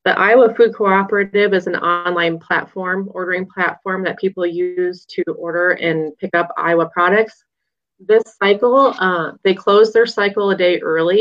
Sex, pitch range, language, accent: female, 170-195 Hz, English, American